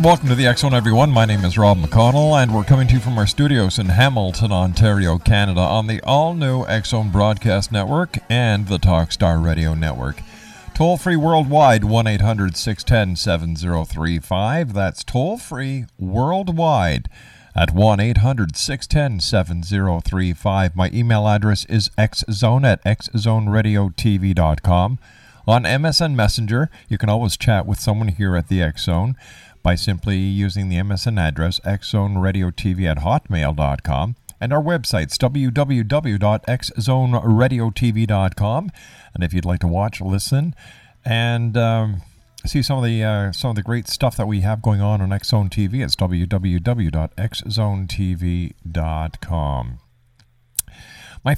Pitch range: 95-125 Hz